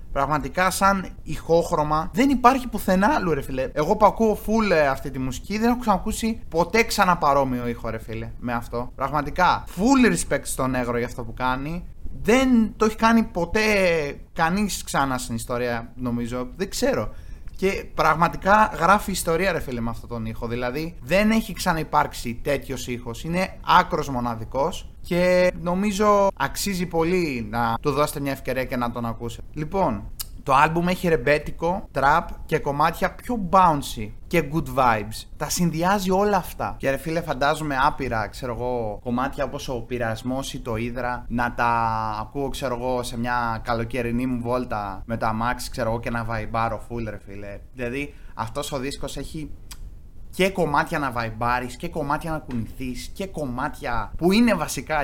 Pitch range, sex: 120-180 Hz, male